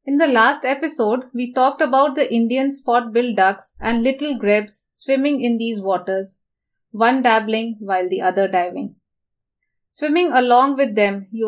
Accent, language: Indian, English